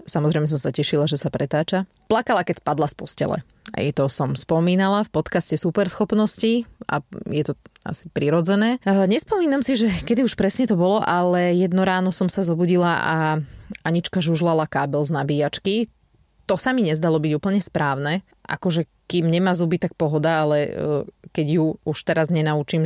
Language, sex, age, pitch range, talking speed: Slovak, female, 20-39, 155-190 Hz, 165 wpm